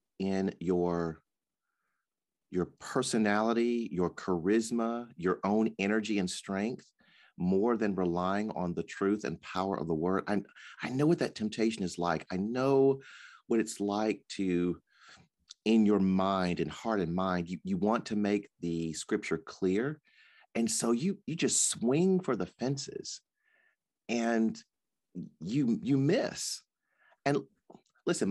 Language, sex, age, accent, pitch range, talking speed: English, male, 40-59, American, 95-135 Hz, 140 wpm